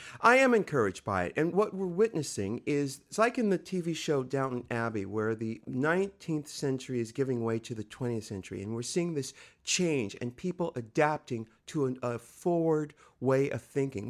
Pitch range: 120-155 Hz